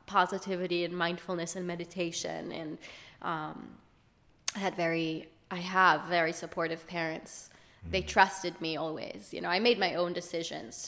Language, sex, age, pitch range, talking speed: English, female, 20-39, 170-195 Hz, 145 wpm